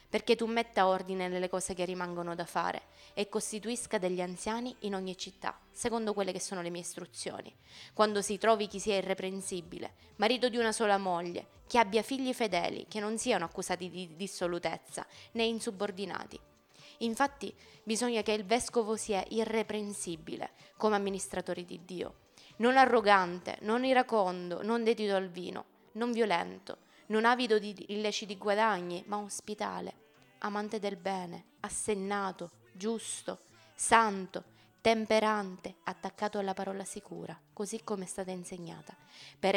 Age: 20-39